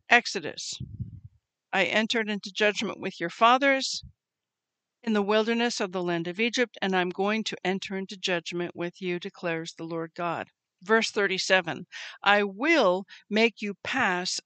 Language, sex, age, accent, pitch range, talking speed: English, female, 50-69, American, 185-240 Hz, 150 wpm